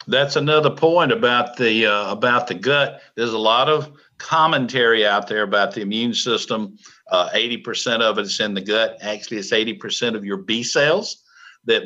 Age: 50-69